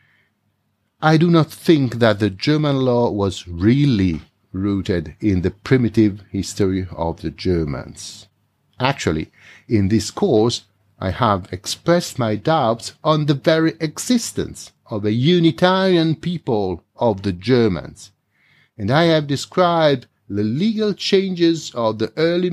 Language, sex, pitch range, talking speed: English, male, 100-150 Hz, 130 wpm